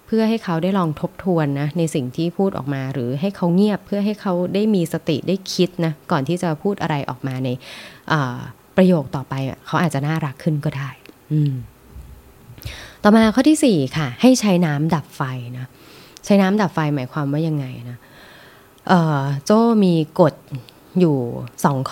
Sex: female